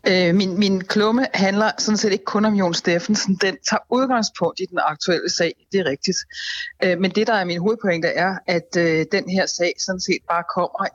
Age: 30-49